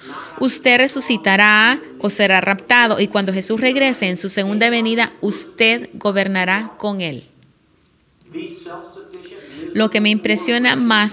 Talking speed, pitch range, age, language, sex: 120 wpm, 190-230 Hz, 30-49, English, female